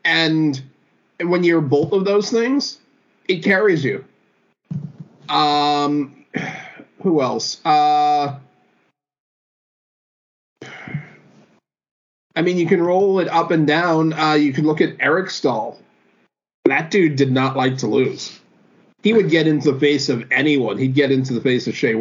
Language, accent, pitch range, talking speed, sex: English, American, 140-170 Hz, 140 wpm, male